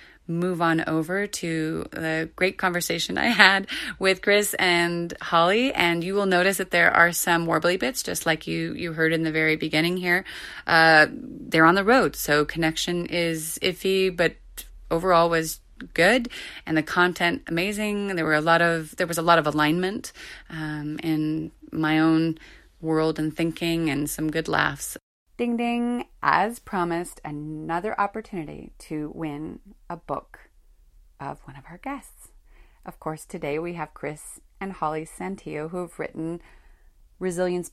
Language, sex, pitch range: English, female, 155-190 Hz